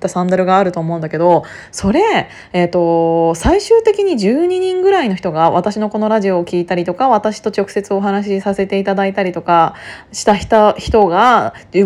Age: 20-39